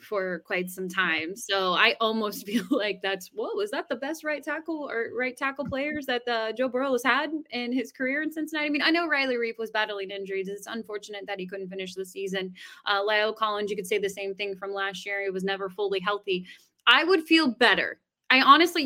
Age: 20-39